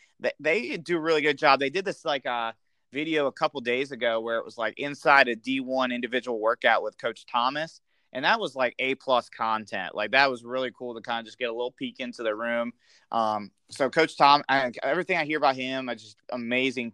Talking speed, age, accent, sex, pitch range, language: 230 wpm, 30-49, American, male, 115-145 Hz, English